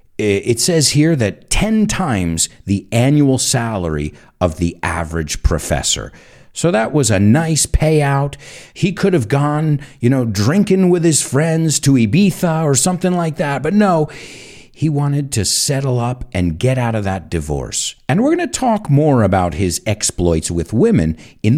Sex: male